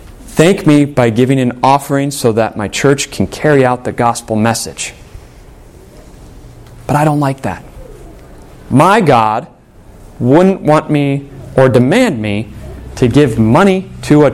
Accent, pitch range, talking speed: American, 105-140 Hz, 140 wpm